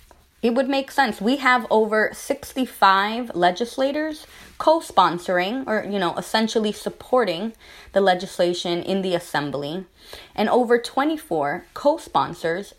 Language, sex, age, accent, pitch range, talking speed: English, female, 20-39, American, 175-230 Hz, 115 wpm